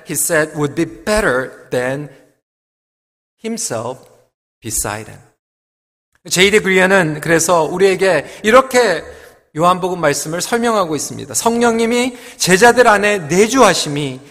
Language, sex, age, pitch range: Korean, male, 40-59, 175-250 Hz